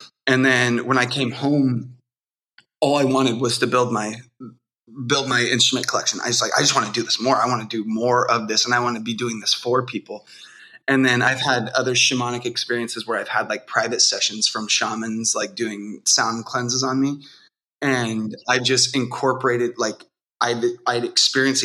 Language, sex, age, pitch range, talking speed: English, male, 20-39, 115-130 Hz, 200 wpm